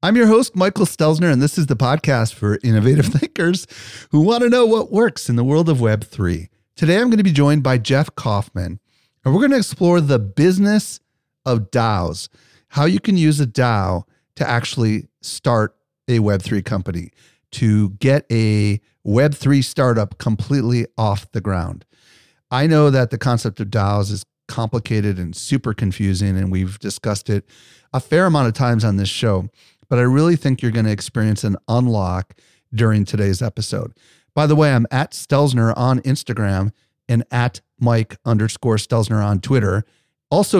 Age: 40-59